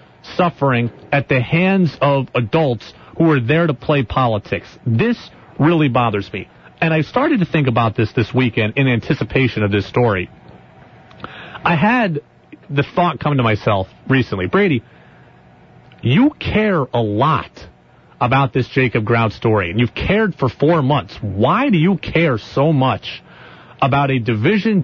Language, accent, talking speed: English, American, 150 wpm